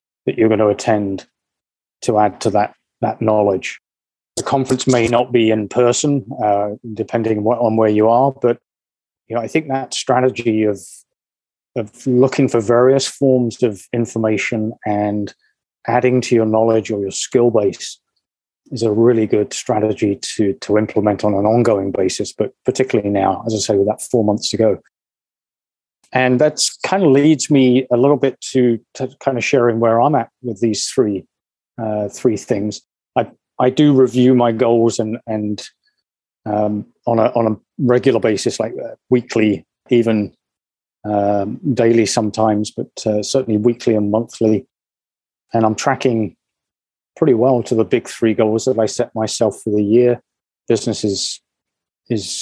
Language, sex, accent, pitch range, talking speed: English, male, British, 105-125 Hz, 165 wpm